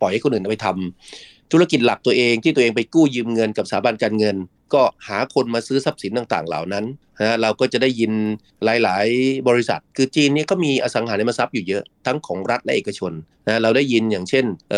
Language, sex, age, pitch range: Thai, male, 30-49, 105-140 Hz